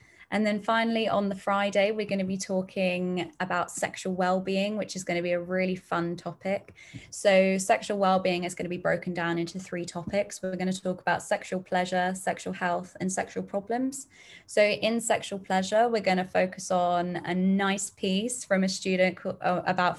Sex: female